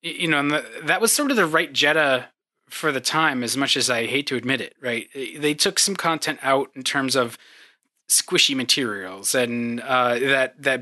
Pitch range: 125-150 Hz